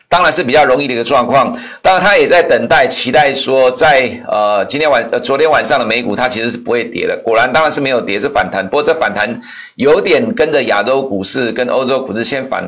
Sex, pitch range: male, 120-160 Hz